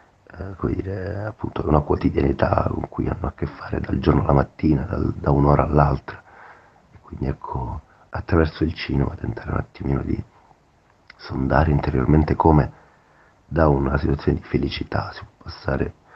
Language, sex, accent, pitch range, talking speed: Italian, male, native, 70-85 Hz, 150 wpm